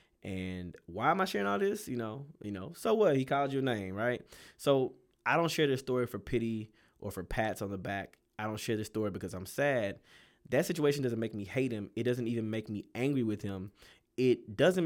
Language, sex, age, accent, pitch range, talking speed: English, male, 20-39, American, 105-125 Hz, 230 wpm